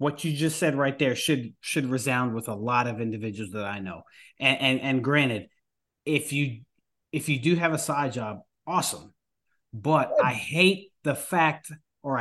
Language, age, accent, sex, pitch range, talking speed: English, 30-49, American, male, 130-165 Hz, 180 wpm